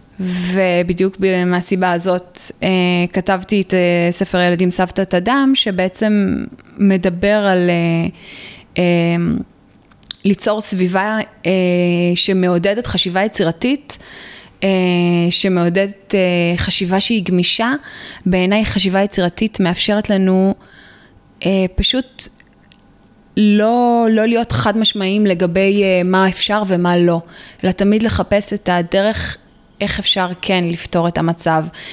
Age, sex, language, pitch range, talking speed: 20-39, female, Hebrew, 180-210 Hz, 110 wpm